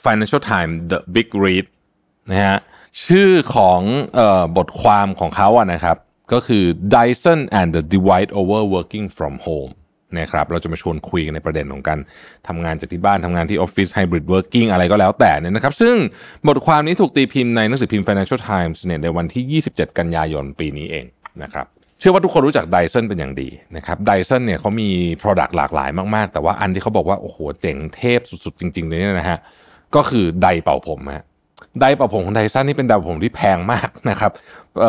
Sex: male